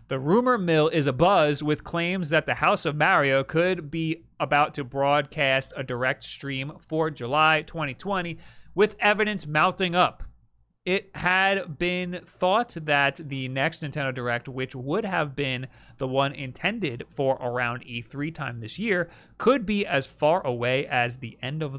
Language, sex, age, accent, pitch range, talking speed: English, male, 30-49, American, 130-165 Hz, 160 wpm